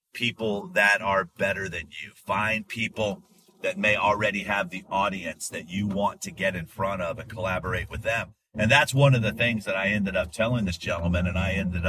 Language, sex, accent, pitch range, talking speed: English, male, American, 95-125 Hz, 210 wpm